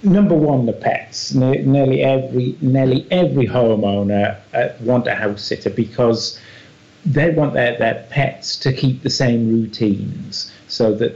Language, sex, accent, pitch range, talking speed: English, male, British, 100-125 Hz, 140 wpm